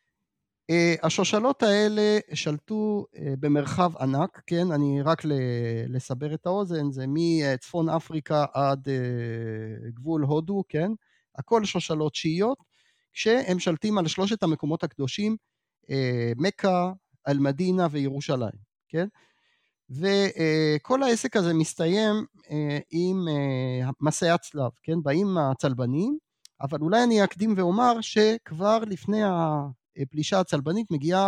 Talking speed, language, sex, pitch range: 115 wpm, Hebrew, male, 140-195 Hz